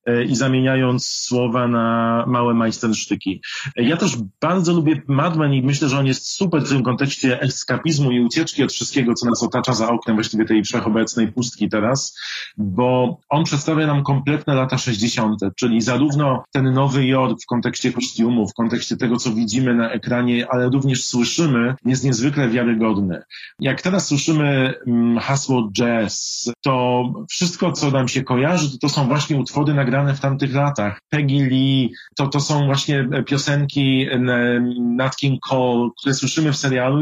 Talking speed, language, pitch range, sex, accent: 155 wpm, Polish, 120-140 Hz, male, native